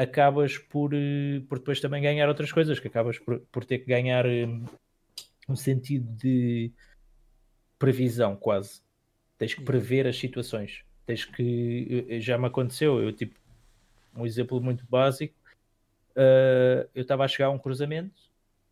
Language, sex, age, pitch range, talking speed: Portuguese, male, 20-39, 125-155 Hz, 145 wpm